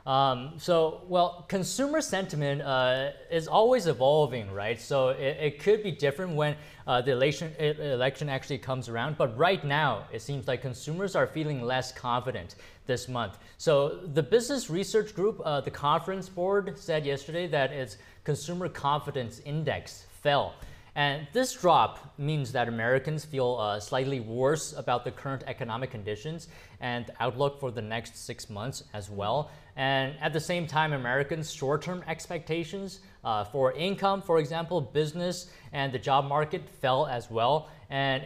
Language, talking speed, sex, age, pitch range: English, 155 wpm, male, 20-39, 130-170 Hz